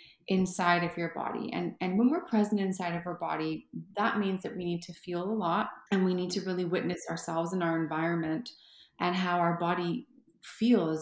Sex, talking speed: female, 200 wpm